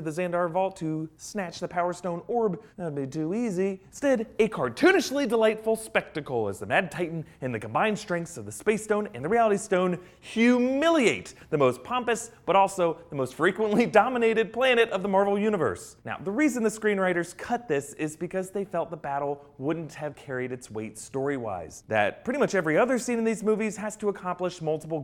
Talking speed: 195 wpm